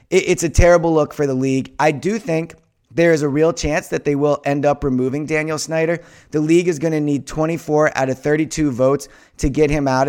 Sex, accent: male, American